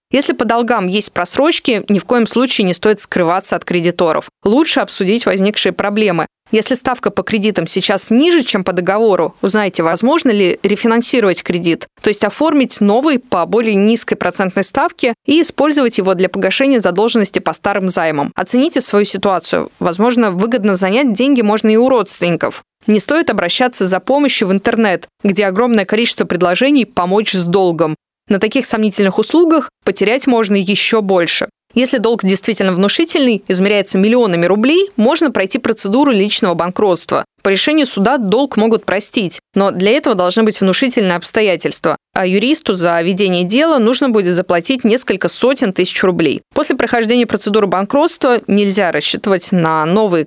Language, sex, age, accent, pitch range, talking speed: Russian, female, 20-39, native, 185-245 Hz, 155 wpm